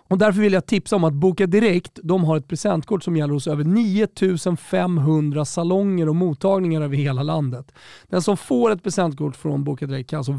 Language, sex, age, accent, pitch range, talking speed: Swedish, male, 30-49, native, 145-190 Hz, 200 wpm